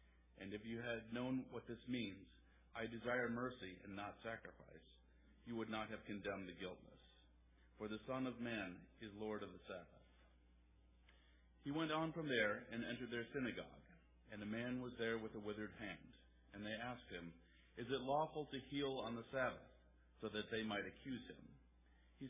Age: 50-69